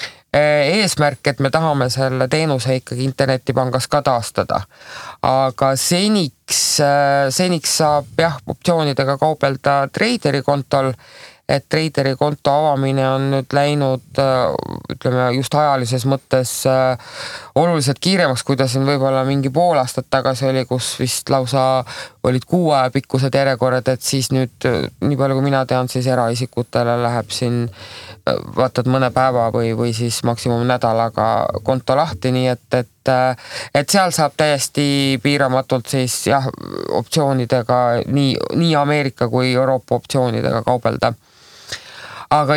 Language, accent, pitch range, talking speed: English, Finnish, 130-145 Hz, 125 wpm